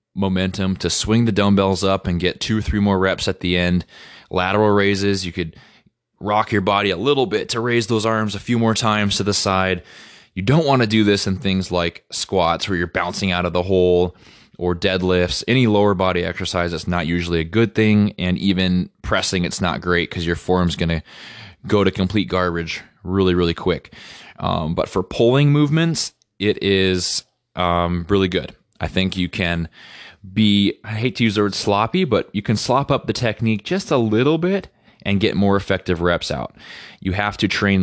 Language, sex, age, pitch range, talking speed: English, male, 20-39, 90-105 Hz, 200 wpm